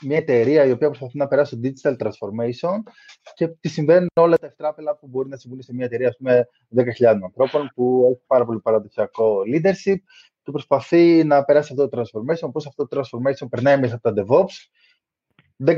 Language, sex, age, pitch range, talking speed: Greek, male, 20-39, 120-155 Hz, 185 wpm